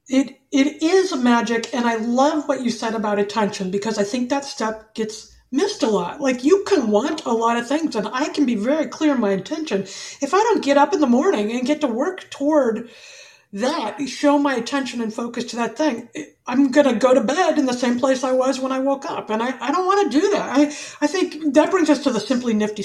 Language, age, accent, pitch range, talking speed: English, 50-69, American, 230-295 Hz, 245 wpm